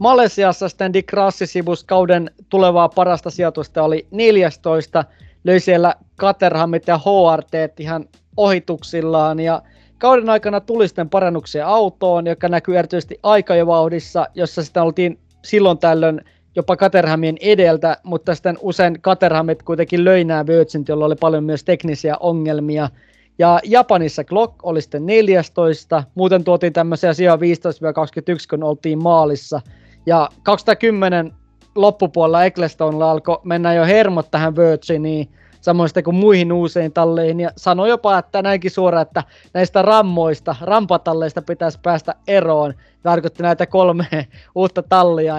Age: 20-39